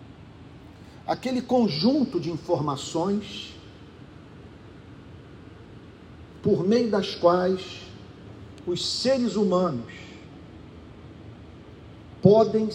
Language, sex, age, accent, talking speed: Portuguese, male, 50-69, Brazilian, 55 wpm